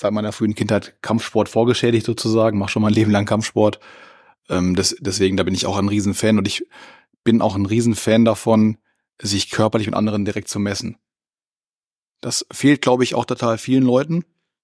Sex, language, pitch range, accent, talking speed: male, German, 105-125 Hz, German, 180 wpm